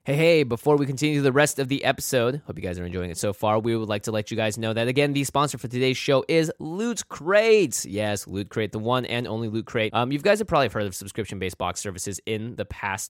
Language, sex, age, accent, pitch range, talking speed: English, male, 20-39, American, 105-135 Hz, 270 wpm